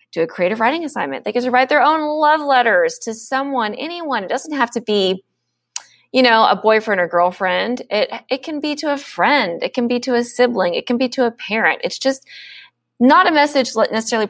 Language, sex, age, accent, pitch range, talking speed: English, female, 20-39, American, 195-275 Hz, 220 wpm